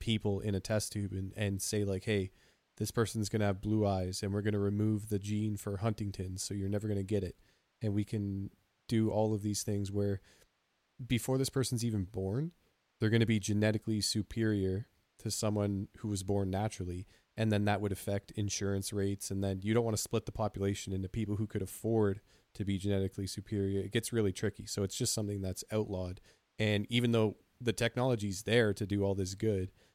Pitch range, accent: 95-110 Hz, American